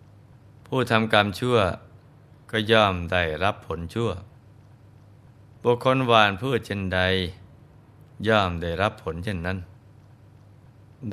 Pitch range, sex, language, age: 100-115 Hz, male, Thai, 20-39